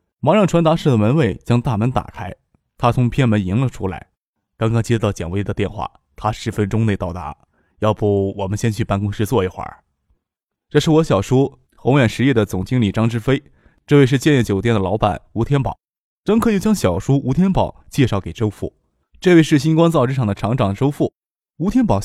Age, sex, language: 20-39, male, Chinese